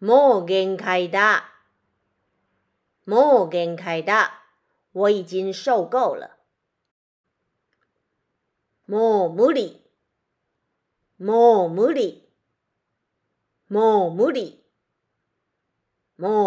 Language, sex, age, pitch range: Japanese, female, 40-59, 185-255 Hz